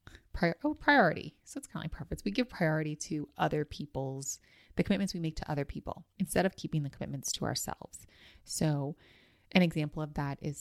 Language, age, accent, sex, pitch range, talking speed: English, 30-49, American, female, 110-170 Hz, 190 wpm